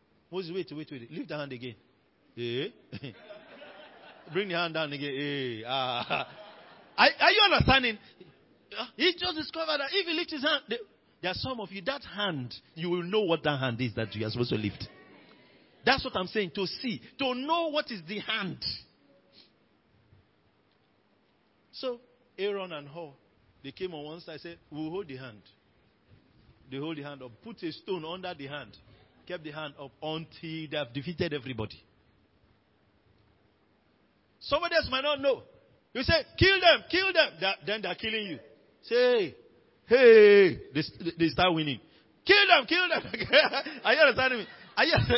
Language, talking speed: English, 170 wpm